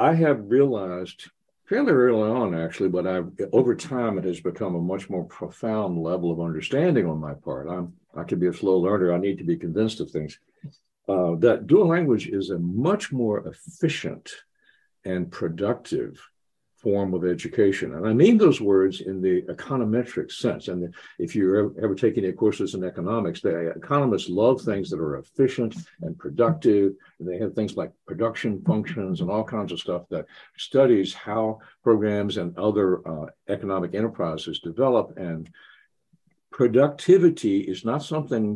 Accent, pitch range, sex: American, 90-135 Hz, male